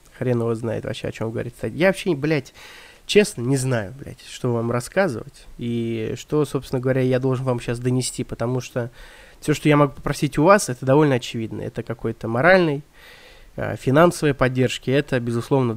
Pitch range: 120-150 Hz